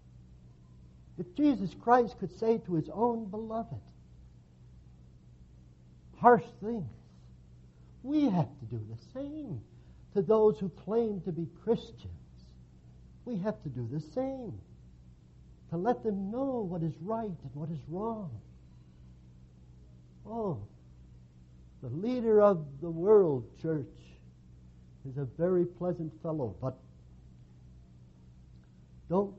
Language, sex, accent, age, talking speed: English, male, American, 60-79, 110 wpm